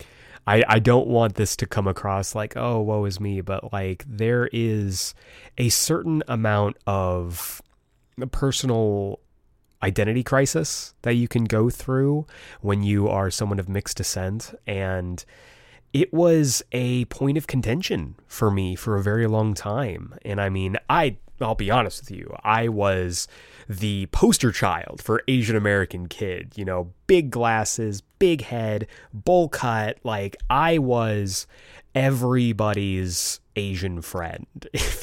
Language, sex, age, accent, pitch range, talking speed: English, male, 20-39, American, 95-120 Hz, 145 wpm